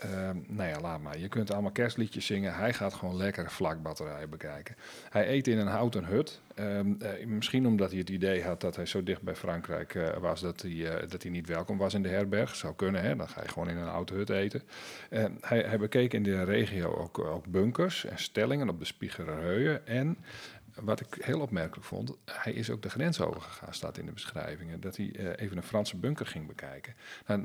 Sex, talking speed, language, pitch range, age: male, 220 wpm, Dutch, 85-110 Hz, 40-59